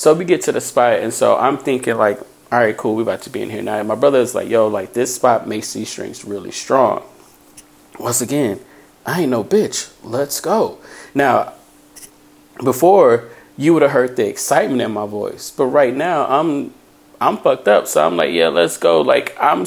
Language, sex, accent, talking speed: English, male, American, 210 wpm